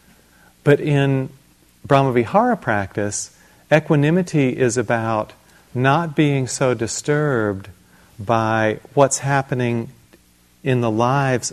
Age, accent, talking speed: 40-59, American, 90 wpm